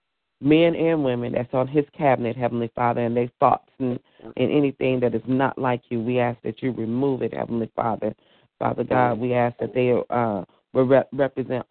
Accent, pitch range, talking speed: American, 120-135 Hz, 185 wpm